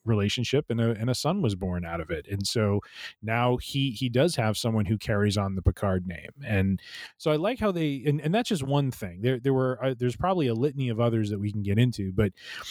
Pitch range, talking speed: 105-130 Hz, 250 wpm